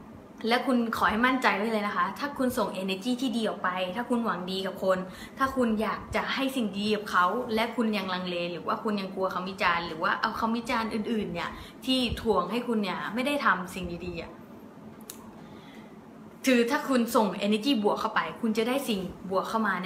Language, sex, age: English, female, 20-39